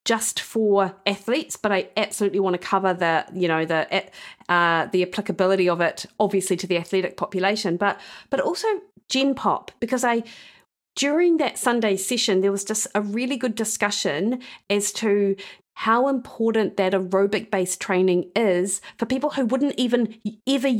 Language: English